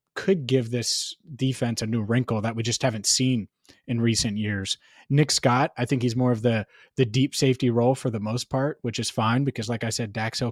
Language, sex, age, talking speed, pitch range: English, male, 30-49, 220 wpm, 110-130 Hz